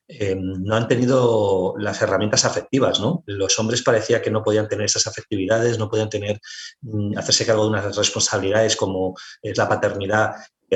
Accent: Spanish